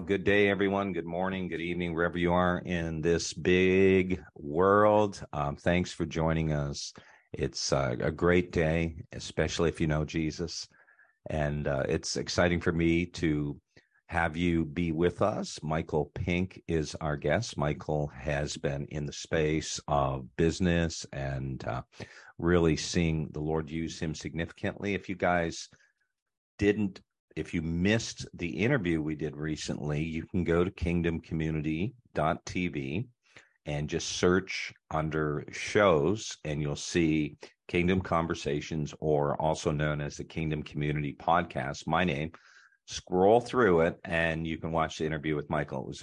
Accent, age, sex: American, 50-69, male